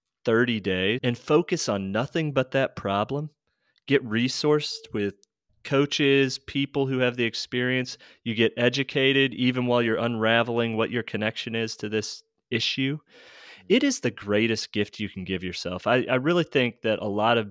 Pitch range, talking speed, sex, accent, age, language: 105-135 Hz, 170 wpm, male, American, 30-49, English